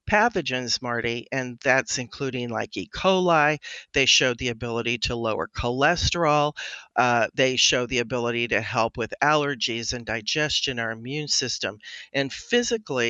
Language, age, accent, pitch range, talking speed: English, 50-69, American, 125-155 Hz, 140 wpm